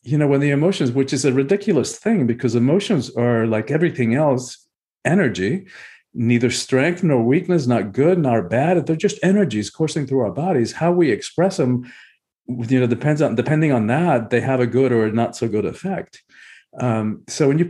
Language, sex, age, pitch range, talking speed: English, male, 50-69, 110-150 Hz, 190 wpm